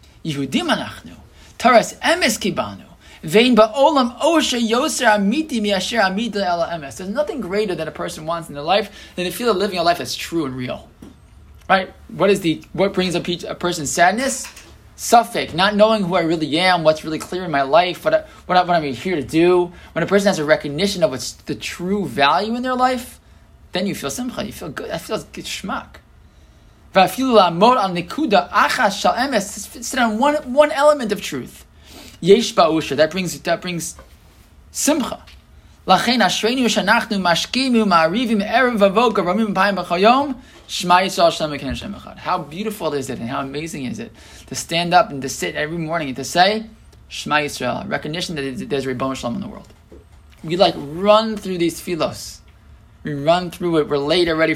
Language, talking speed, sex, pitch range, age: English, 150 wpm, male, 155-215 Hz, 20-39